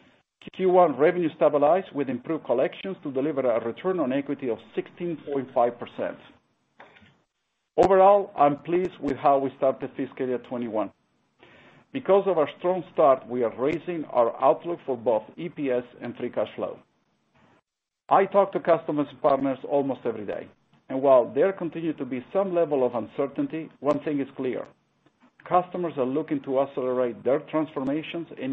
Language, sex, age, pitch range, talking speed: English, male, 50-69, 125-165 Hz, 150 wpm